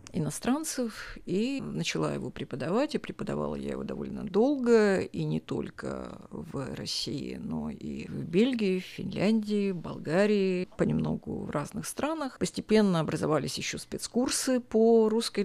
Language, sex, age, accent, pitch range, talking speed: Russian, female, 50-69, native, 170-220 Hz, 130 wpm